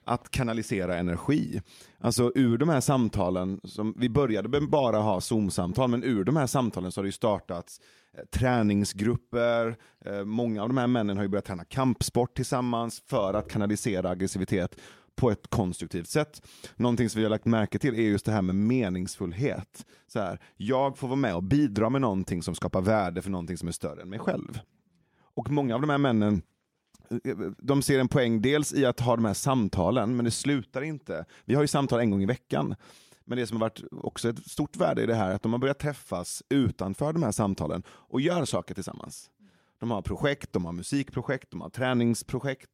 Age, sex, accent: 30-49, male, native